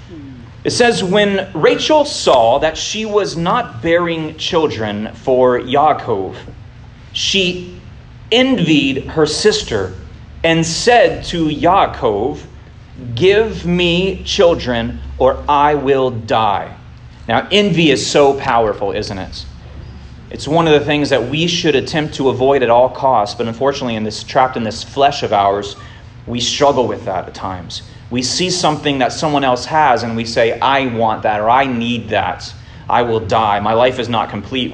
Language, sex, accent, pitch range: English, male, American, 115-150 Hz